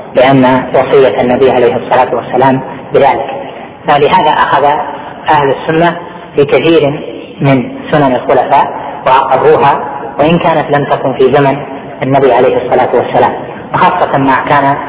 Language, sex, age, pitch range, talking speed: Arabic, female, 30-49, 130-145 Hz, 115 wpm